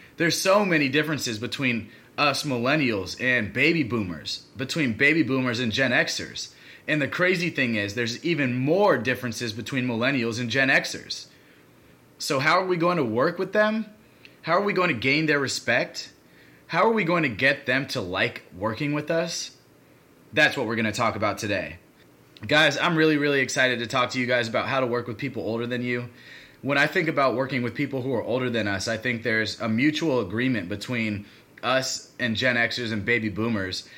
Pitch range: 110-145 Hz